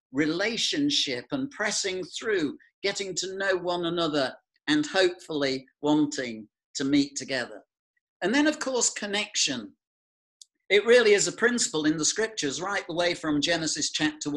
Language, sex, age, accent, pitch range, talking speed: English, male, 50-69, British, 160-240 Hz, 140 wpm